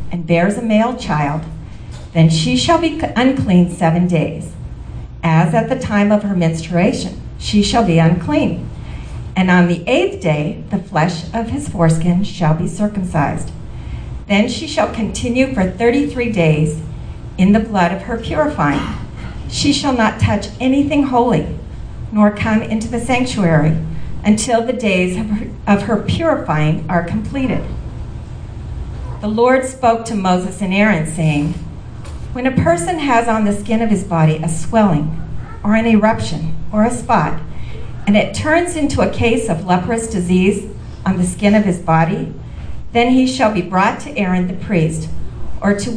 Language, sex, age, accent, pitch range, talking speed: English, female, 50-69, American, 165-225 Hz, 155 wpm